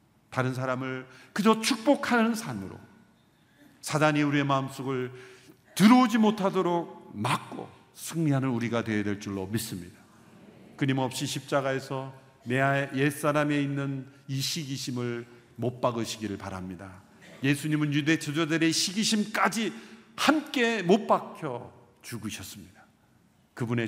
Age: 50-69